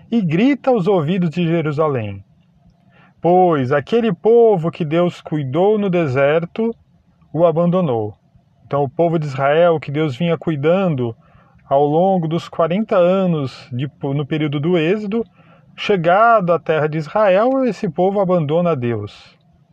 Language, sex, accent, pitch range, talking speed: Portuguese, male, Brazilian, 155-195 Hz, 130 wpm